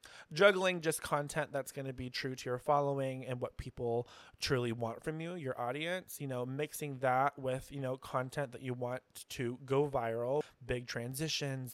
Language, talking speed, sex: English, 185 wpm, male